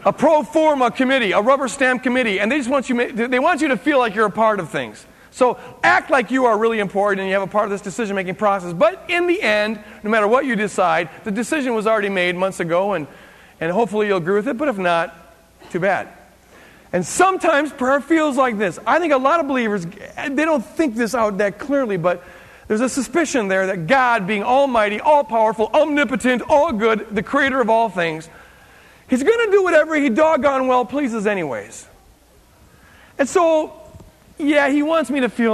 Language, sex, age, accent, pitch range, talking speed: English, male, 40-59, American, 200-280 Hz, 205 wpm